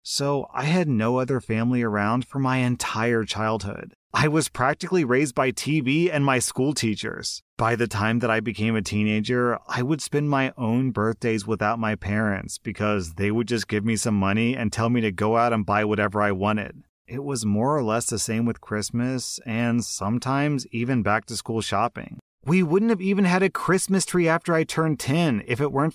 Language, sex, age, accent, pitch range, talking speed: English, male, 30-49, American, 105-130 Hz, 205 wpm